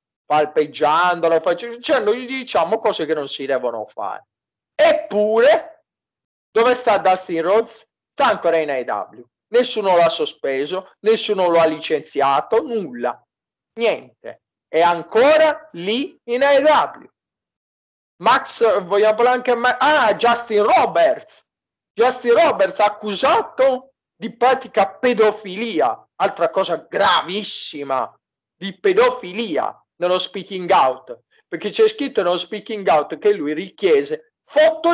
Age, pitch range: 40-59, 190-295 Hz